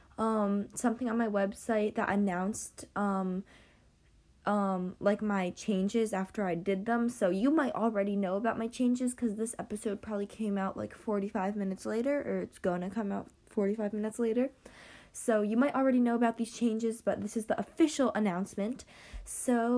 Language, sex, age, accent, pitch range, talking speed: English, female, 10-29, American, 200-240 Hz, 175 wpm